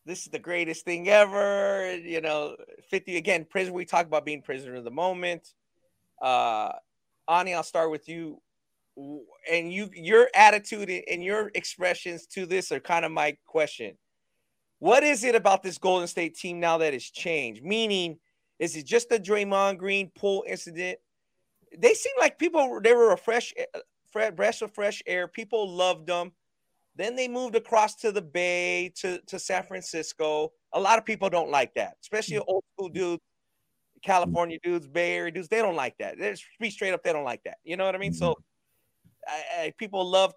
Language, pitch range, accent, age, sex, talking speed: English, 175-220 Hz, American, 30-49, male, 180 wpm